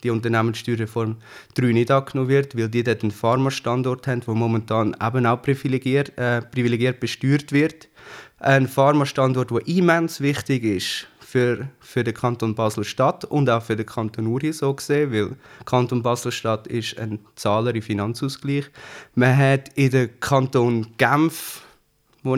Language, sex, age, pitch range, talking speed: German, male, 20-39, 120-135 Hz, 145 wpm